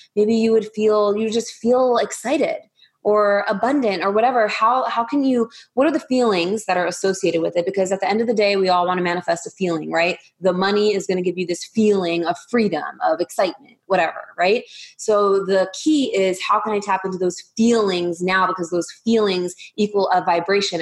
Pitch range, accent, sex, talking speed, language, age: 185-225 Hz, American, female, 210 wpm, English, 20-39